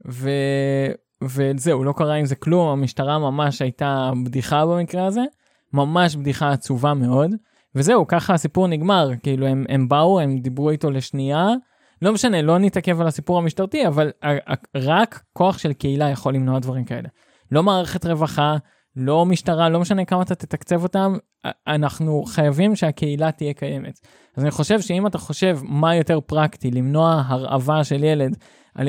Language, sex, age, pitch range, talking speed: Hebrew, male, 20-39, 135-170 Hz, 155 wpm